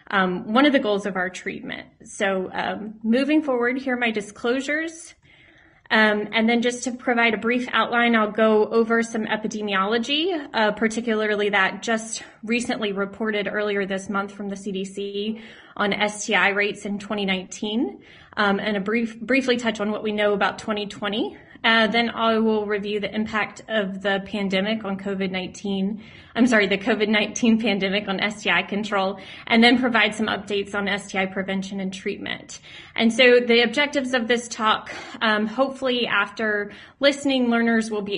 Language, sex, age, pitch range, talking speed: English, female, 20-39, 200-230 Hz, 160 wpm